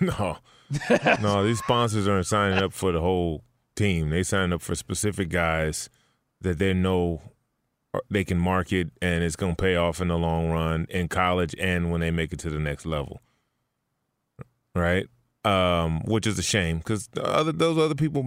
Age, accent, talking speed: 20-39, American, 175 wpm